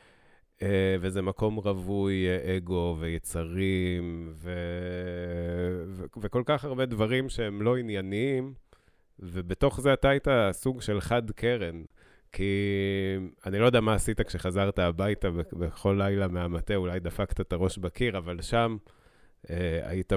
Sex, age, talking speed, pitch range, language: male, 30-49, 130 wpm, 90-110 Hz, Hebrew